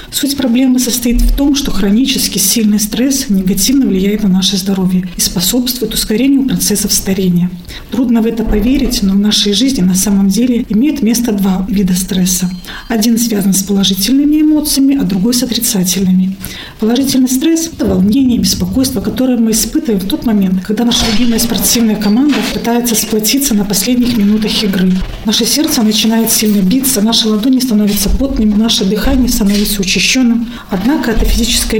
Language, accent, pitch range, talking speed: Russian, native, 200-240 Hz, 155 wpm